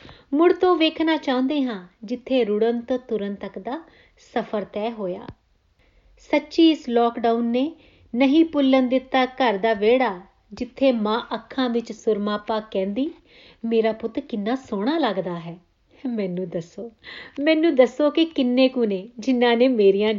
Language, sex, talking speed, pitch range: Punjabi, female, 140 wpm, 200-260 Hz